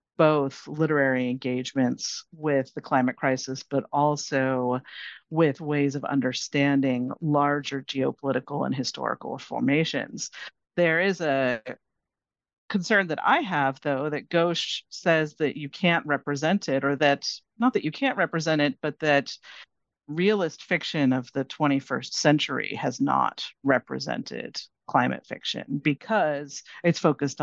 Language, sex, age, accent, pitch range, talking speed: English, female, 40-59, American, 140-170 Hz, 125 wpm